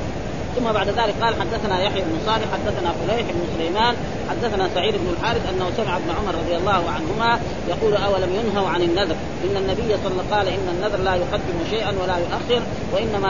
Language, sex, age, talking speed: Arabic, female, 30-49, 195 wpm